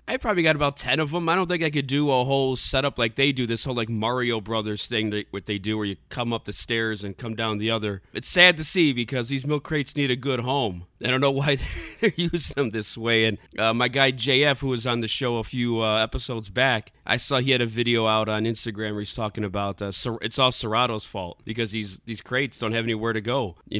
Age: 20-39